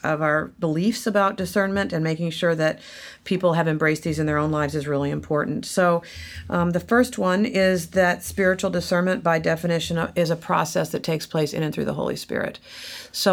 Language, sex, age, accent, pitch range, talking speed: English, female, 50-69, American, 150-190 Hz, 200 wpm